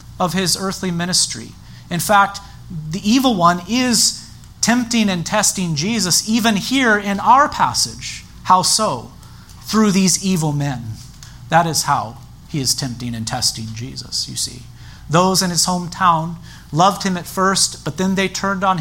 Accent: American